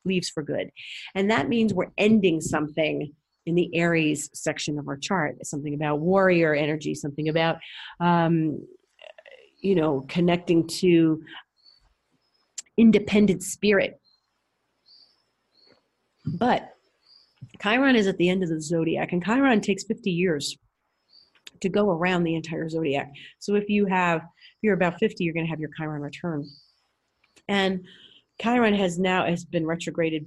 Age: 40-59